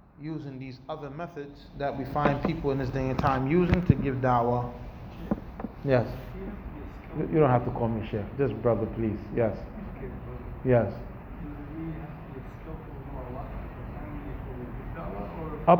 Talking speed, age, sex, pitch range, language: 120 wpm, 30-49, male, 135-175 Hz, English